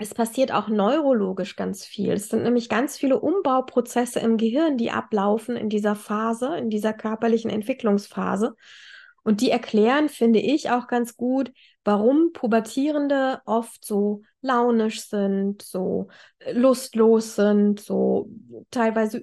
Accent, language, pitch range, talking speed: German, German, 210-255 Hz, 130 wpm